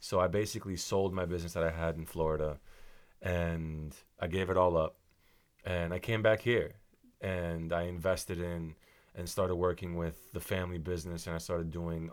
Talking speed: 185 wpm